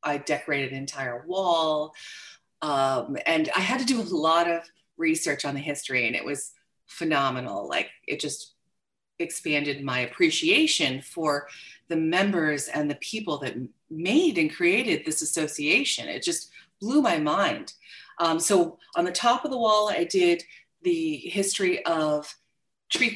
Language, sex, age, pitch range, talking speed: English, female, 30-49, 145-230 Hz, 155 wpm